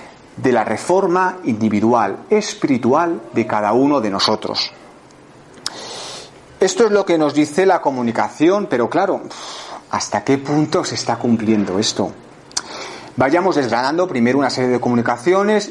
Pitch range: 120-180 Hz